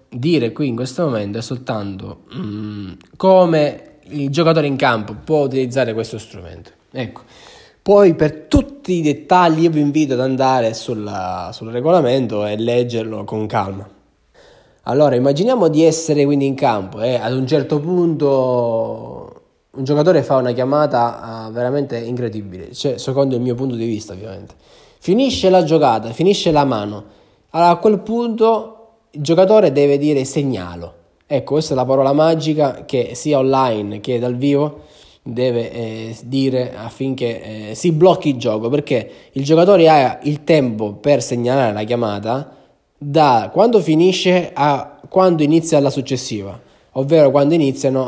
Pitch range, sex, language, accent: 115-160 Hz, male, Italian, native